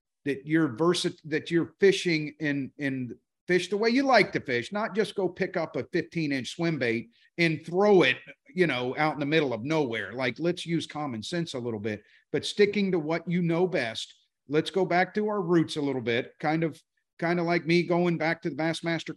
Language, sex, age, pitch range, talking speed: English, male, 50-69, 140-180 Hz, 220 wpm